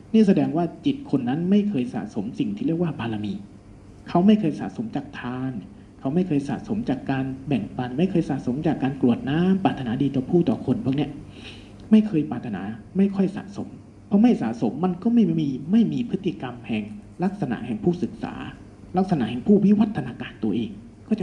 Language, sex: Thai, male